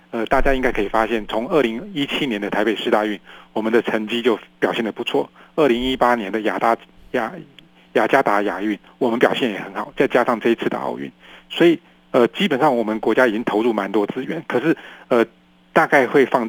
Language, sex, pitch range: Chinese, male, 105-140 Hz